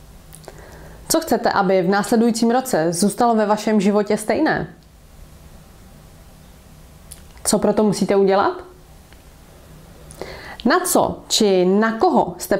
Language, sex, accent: Czech, female, native